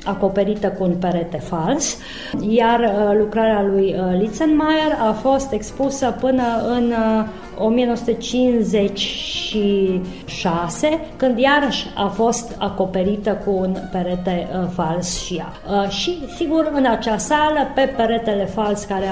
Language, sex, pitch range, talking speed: Romanian, female, 190-250 Hz, 110 wpm